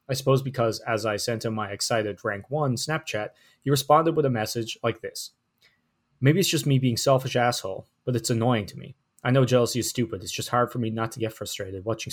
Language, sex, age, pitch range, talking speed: English, male, 20-39, 110-130 Hz, 230 wpm